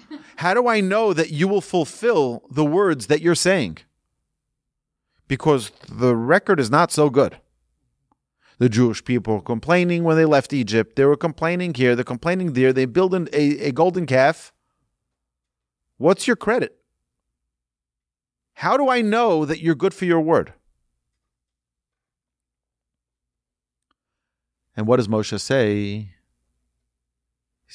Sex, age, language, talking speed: male, 40-59, English, 130 wpm